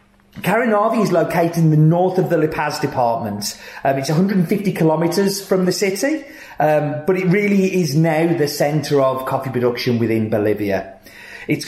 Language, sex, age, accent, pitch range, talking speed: English, male, 30-49, British, 140-180 Hz, 165 wpm